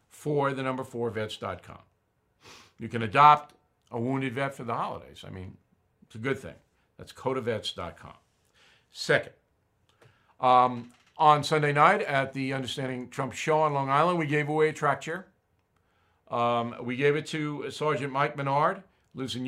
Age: 50-69